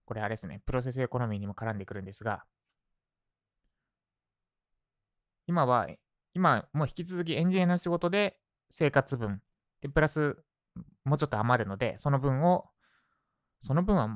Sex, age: male, 20-39